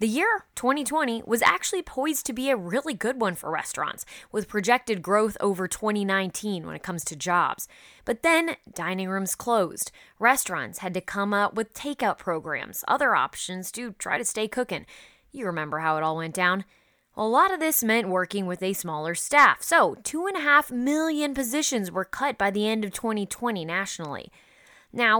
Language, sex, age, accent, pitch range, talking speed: English, female, 20-39, American, 190-260 Hz, 175 wpm